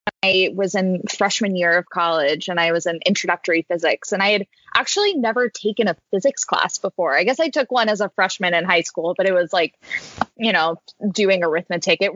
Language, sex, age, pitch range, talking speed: English, female, 20-39, 185-230 Hz, 210 wpm